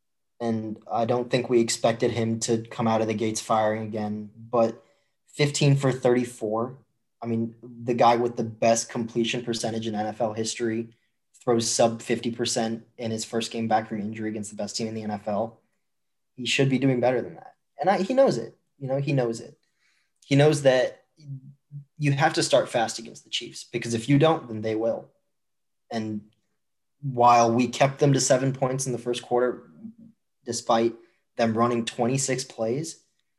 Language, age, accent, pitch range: English, 20-39, American, 110-130 Hz